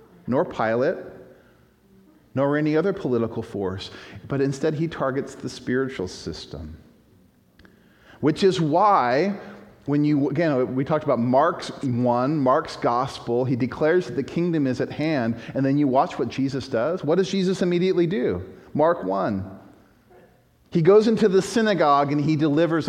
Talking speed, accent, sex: 150 wpm, American, male